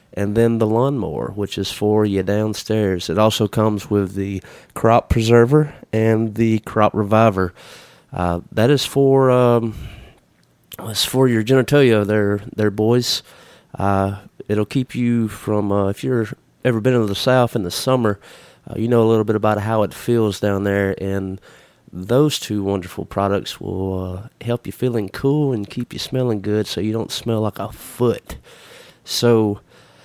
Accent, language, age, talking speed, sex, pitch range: American, English, 30-49, 170 wpm, male, 100-120 Hz